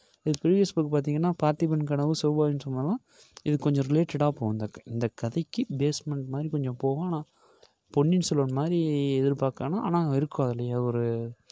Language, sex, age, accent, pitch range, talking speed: Tamil, male, 20-39, native, 120-150 Hz, 130 wpm